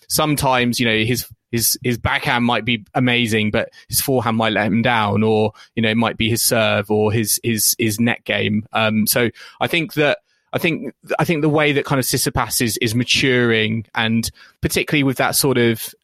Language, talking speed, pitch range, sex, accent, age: English, 205 wpm, 110-125 Hz, male, British, 20-39